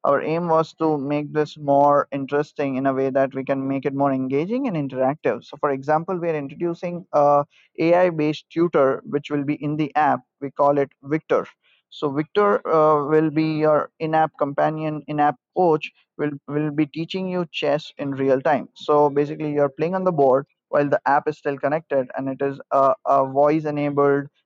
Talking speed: 190 wpm